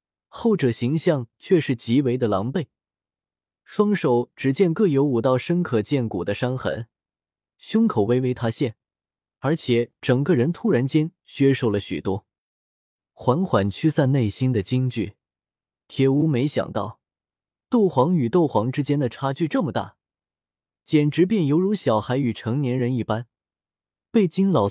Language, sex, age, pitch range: Chinese, male, 20-39, 115-165 Hz